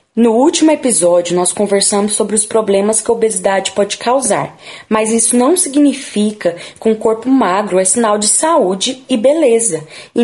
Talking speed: 165 wpm